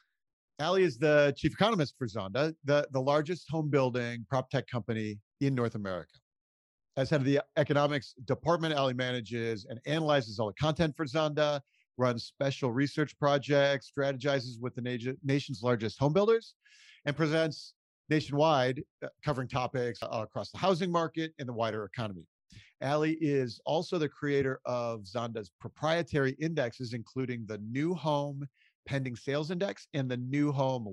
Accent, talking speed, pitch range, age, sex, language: American, 145 wpm, 115-150 Hz, 50-69, male, English